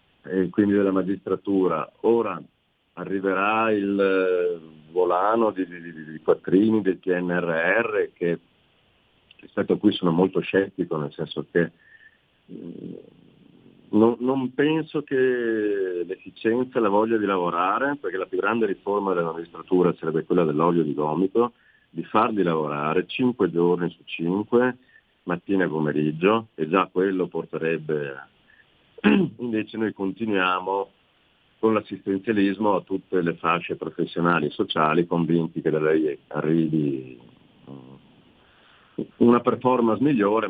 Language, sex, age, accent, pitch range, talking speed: Italian, male, 40-59, native, 85-115 Hz, 120 wpm